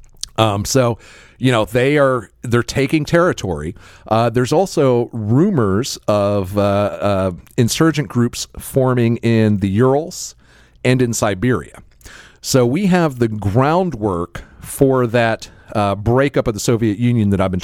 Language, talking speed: English, 140 wpm